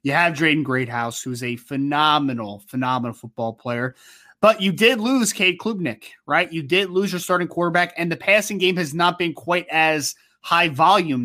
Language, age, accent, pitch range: English, 20-39, American, 135-180 Hz